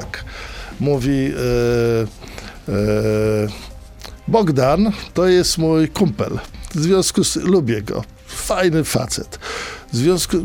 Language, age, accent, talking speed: Polish, 50-69, native, 105 wpm